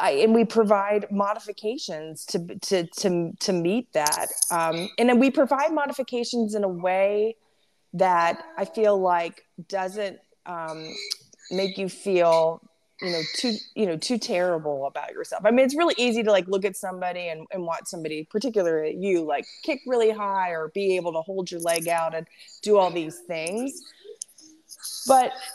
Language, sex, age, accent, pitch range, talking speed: English, female, 20-39, American, 165-210 Hz, 165 wpm